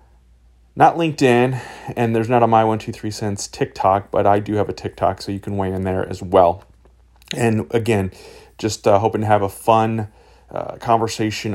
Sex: male